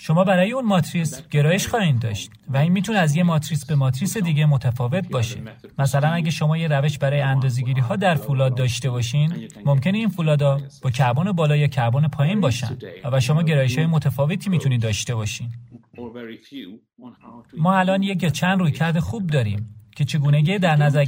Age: 30-49